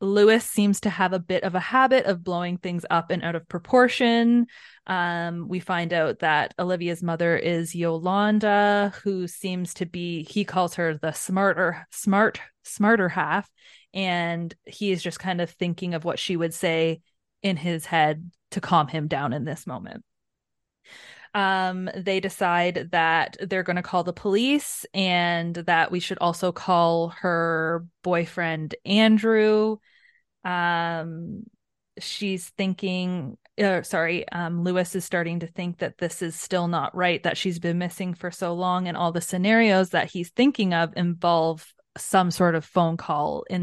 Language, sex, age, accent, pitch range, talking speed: English, female, 20-39, American, 170-195 Hz, 160 wpm